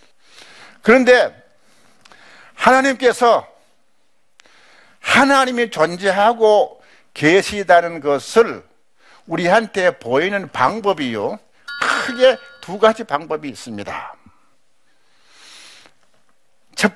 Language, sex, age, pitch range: Korean, male, 60-79, 175-245 Hz